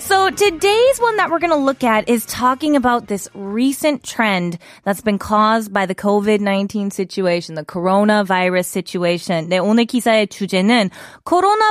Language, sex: Korean, female